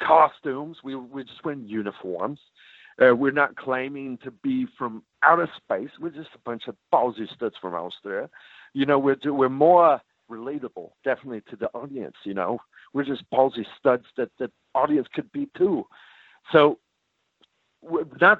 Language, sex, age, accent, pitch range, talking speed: English, male, 50-69, American, 125-165 Hz, 160 wpm